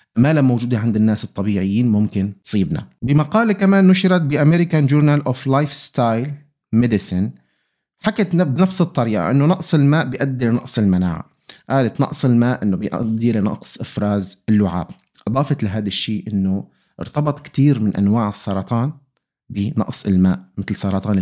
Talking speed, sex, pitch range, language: 135 wpm, male, 100-135 Hz, Arabic